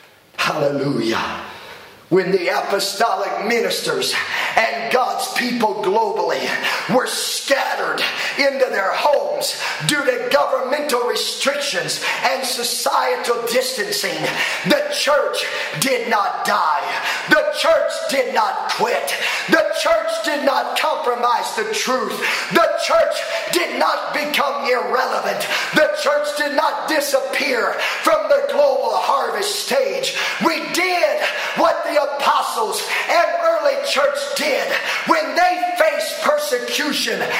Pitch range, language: 275-340 Hz, English